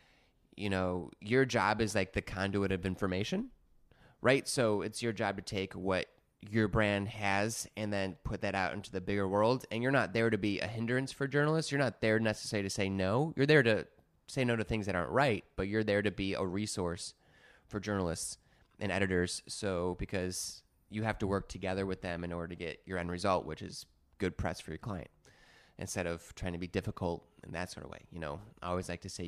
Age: 20-39